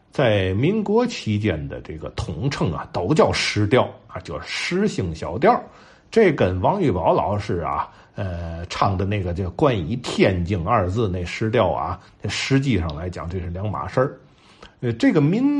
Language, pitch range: Chinese, 95-135 Hz